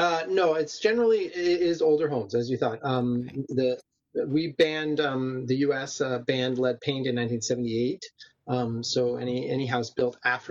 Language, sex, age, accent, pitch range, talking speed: English, male, 30-49, American, 115-140 Hz, 175 wpm